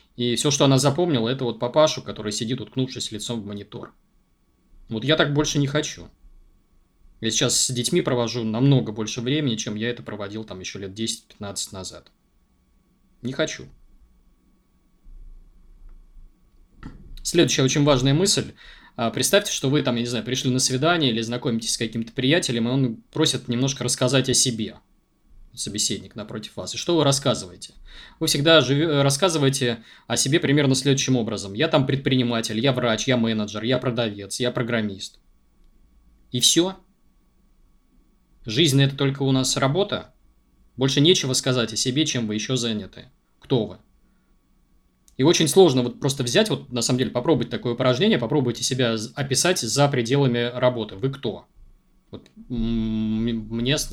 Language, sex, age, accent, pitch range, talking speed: Russian, male, 20-39, native, 115-140 Hz, 150 wpm